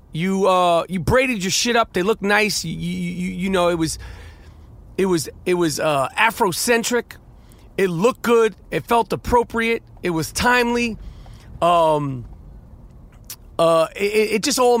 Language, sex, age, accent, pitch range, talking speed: English, male, 30-49, American, 170-235 Hz, 150 wpm